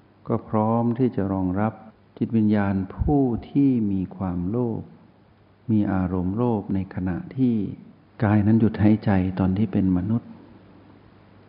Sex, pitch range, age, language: male, 95-115 Hz, 60-79, Thai